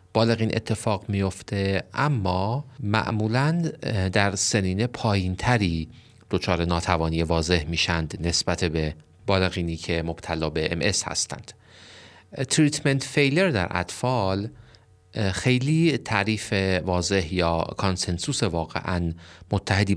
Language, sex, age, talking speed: Persian, male, 40-59, 95 wpm